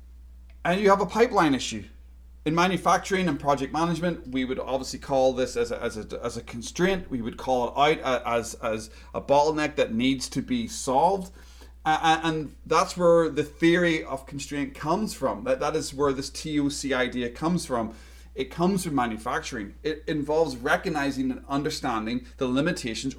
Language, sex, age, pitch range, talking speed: English, male, 30-49, 115-155 Hz, 170 wpm